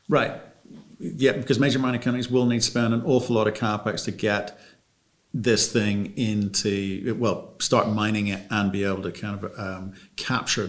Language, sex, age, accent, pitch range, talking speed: English, male, 50-69, British, 100-115 Hz, 180 wpm